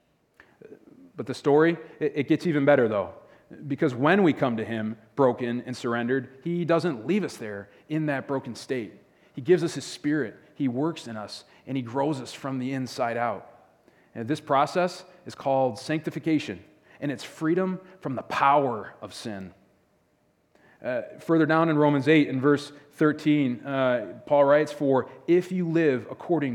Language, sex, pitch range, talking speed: English, male, 120-155 Hz, 165 wpm